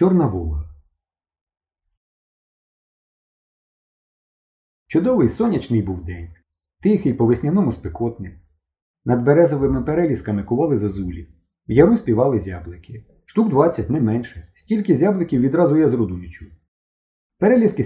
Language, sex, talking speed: Ukrainian, male, 100 wpm